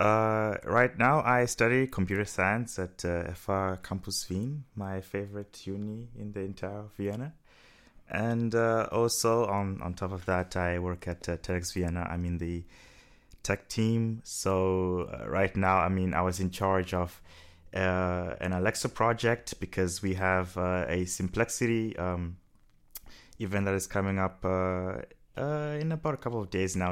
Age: 20-39